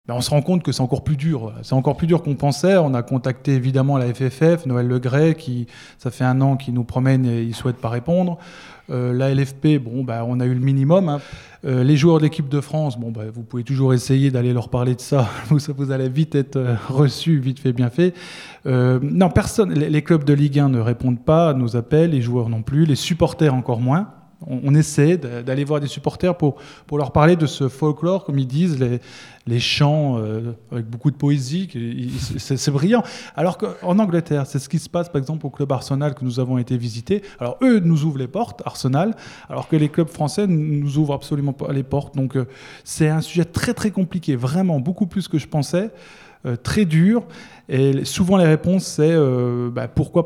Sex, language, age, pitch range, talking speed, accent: male, French, 20-39, 130-160 Hz, 215 wpm, French